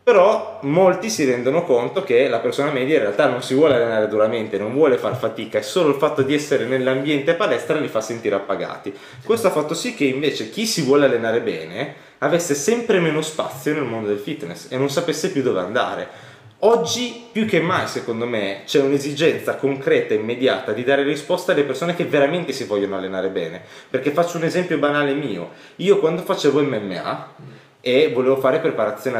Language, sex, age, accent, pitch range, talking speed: Italian, male, 20-39, native, 115-170 Hz, 190 wpm